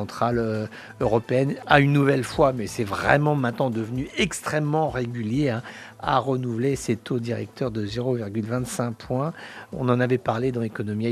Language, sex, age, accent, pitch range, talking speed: English, male, 50-69, French, 120-150 Hz, 145 wpm